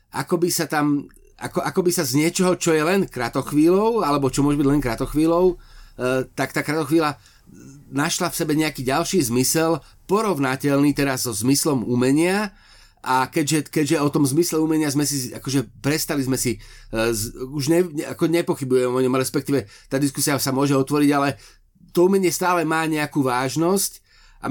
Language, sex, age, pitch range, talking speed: Slovak, male, 30-49, 135-165 Hz, 175 wpm